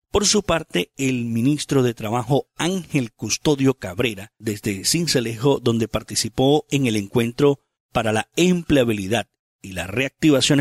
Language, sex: Spanish, male